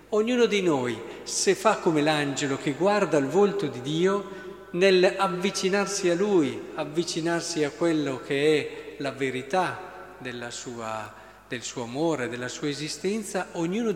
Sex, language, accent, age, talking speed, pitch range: male, Italian, native, 50-69, 135 wpm, 150-195 Hz